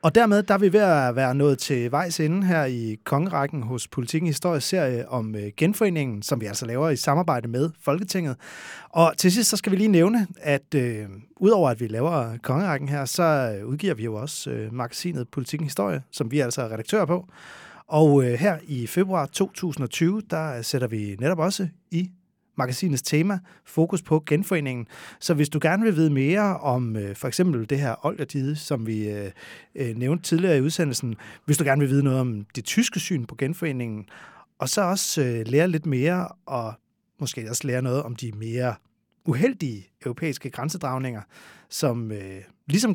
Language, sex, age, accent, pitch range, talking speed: Danish, male, 30-49, native, 120-170 Hz, 175 wpm